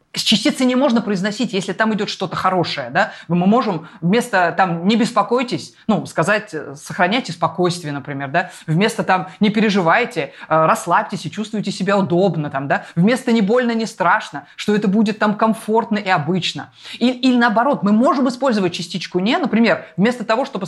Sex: female